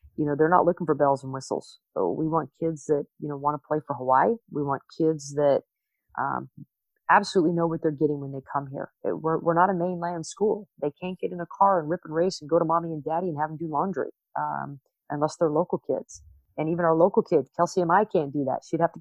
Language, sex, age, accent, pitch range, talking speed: English, female, 30-49, American, 155-190 Hz, 255 wpm